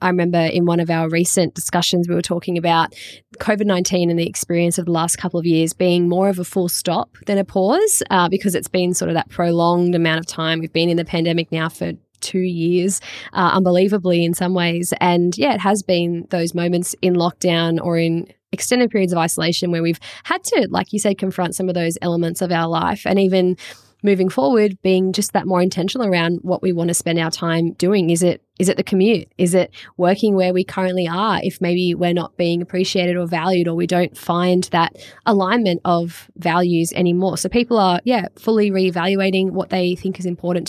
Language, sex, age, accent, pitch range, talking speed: English, female, 10-29, Australian, 170-195 Hz, 215 wpm